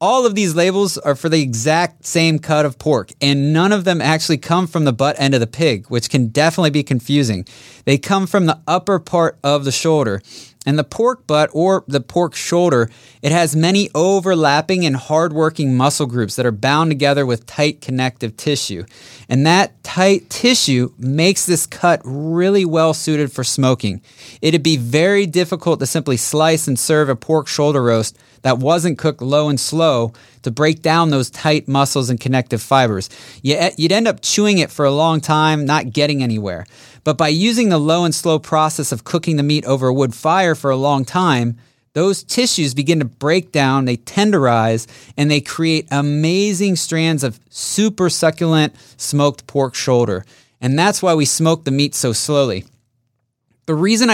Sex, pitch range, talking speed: male, 130-165 Hz, 185 wpm